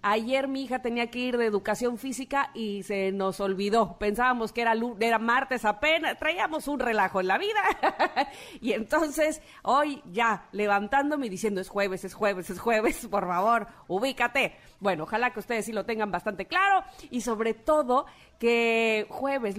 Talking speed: 170 wpm